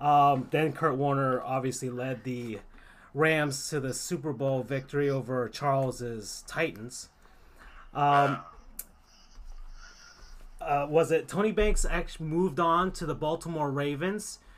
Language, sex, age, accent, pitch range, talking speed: English, male, 30-49, American, 130-165 Hz, 120 wpm